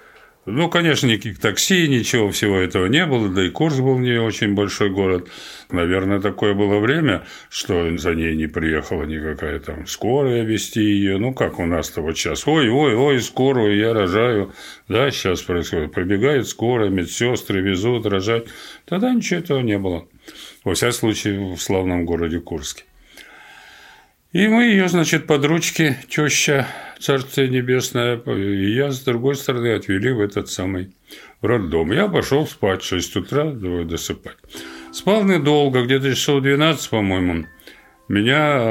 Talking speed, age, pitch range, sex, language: 145 wpm, 50-69, 95-140 Hz, male, Russian